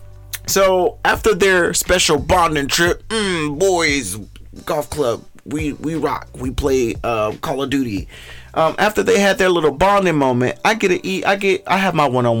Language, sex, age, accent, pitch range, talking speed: English, male, 30-49, American, 115-175 Hz, 175 wpm